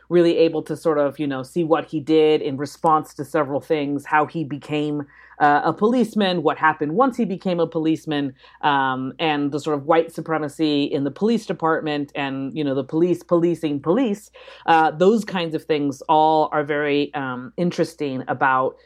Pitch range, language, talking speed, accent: 145-170 Hz, English, 185 wpm, American